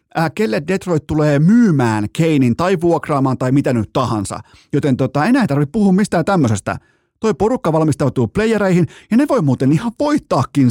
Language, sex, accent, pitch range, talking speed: Finnish, male, native, 115-155 Hz, 165 wpm